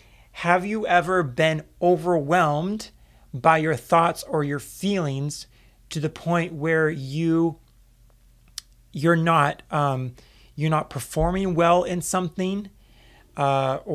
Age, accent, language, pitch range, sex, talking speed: 30-49, American, English, 140-170 Hz, male, 110 wpm